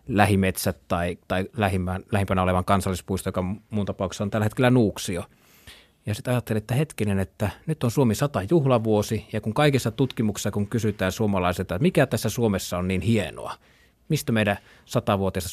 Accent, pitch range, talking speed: native, 95-115 Hz, 160 wpm